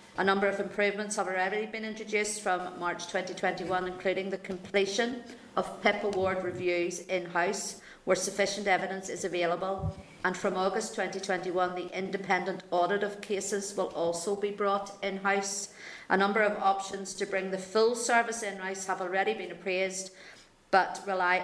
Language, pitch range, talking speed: English, 185-205 Hz, 150 wpm